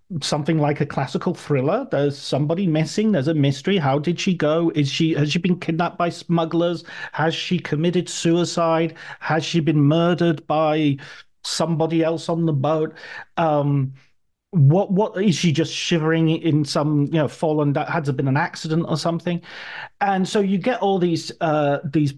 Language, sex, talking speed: English, male, 175 wpm